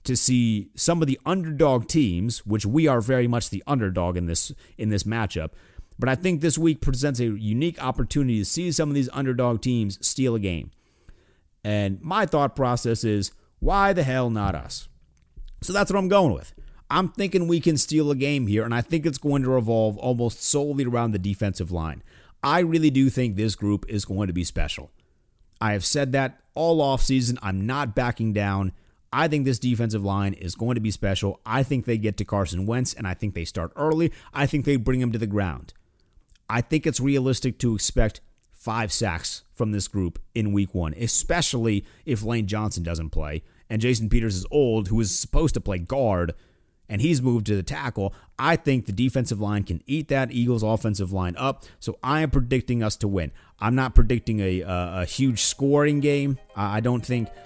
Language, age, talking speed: English, 30-49, 205 wpm